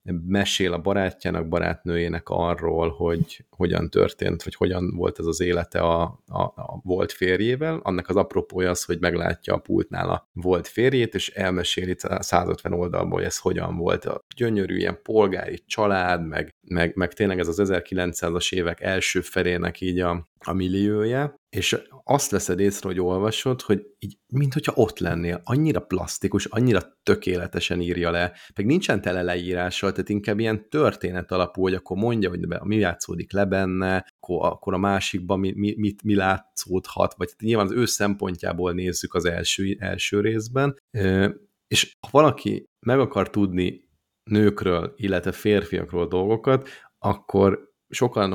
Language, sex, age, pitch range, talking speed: Hungarian, male, 30-49, 90-105 Hz, 150 wpm